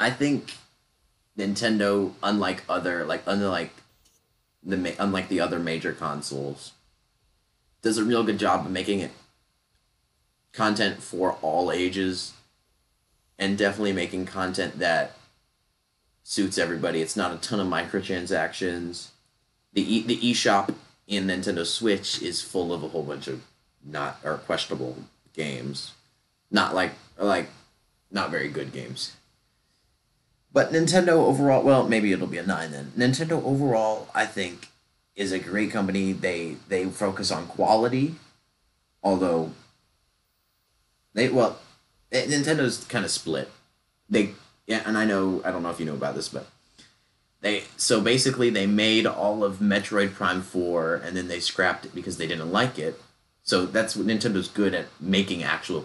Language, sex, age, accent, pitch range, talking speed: English, male, 20-39, American, 85-110 Hz, 145 wpm